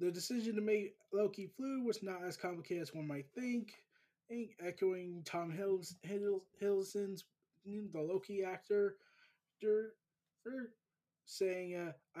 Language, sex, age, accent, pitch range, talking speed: English, male, 20-39, American, 145-200 Hz, 135 wpm